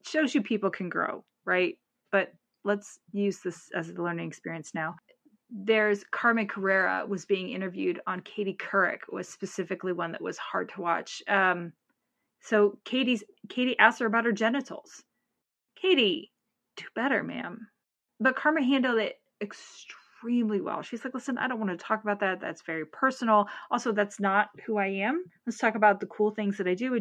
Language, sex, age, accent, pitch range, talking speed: English, female, 30-49, American, 190-235 Hz, 175 wpm